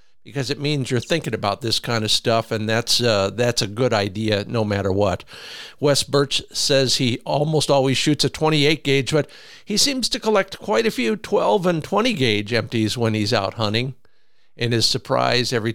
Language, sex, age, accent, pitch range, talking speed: English, male, 50-69, American, 110-140 Hz, 185 wpm